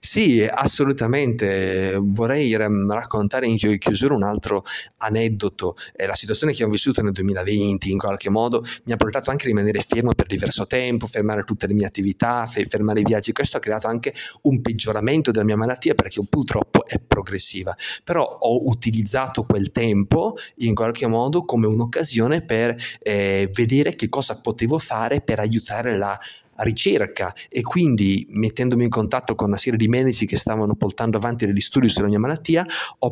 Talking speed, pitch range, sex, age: 165 wpm, 105-125 Hz, male, 30-49